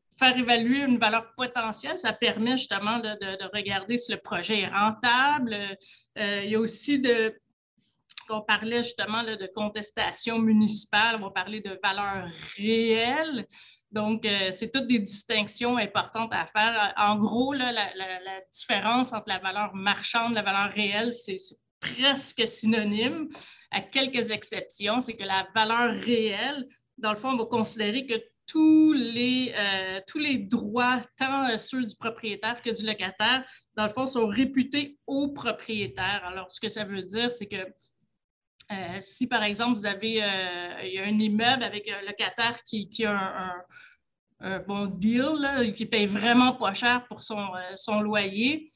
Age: 30-49